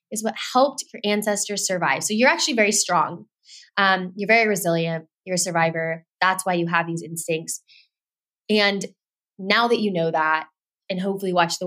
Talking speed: 175 wpm